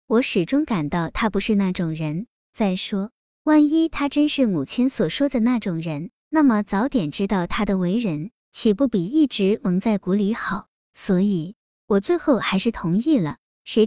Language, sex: Chinese, male